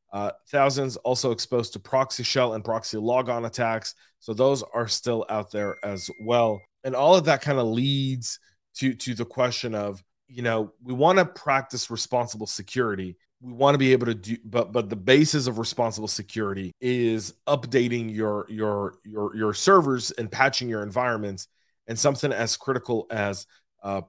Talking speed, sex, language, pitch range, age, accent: 175 wpm, male, English, 105-125 Hz, 30-49, American